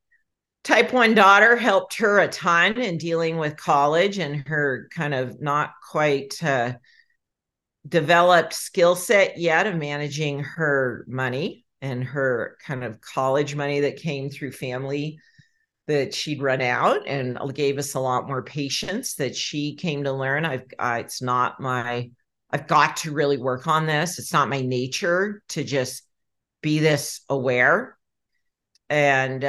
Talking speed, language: 150 wpm, English